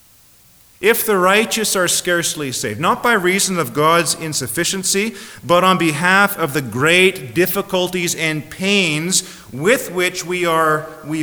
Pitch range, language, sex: 100-165 Hz, English, male